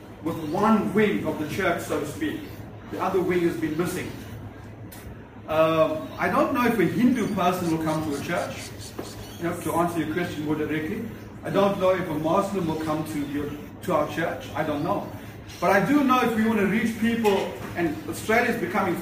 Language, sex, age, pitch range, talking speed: English, male, 30-49, 155-205 Hz, 210 wpm